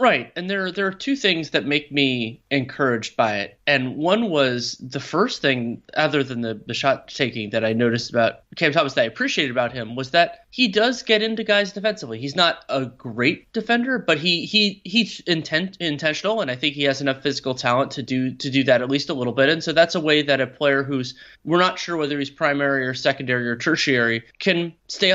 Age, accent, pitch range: 30-49, American, 135-170 Hz